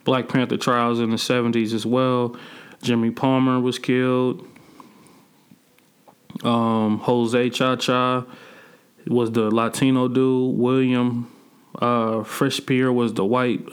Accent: American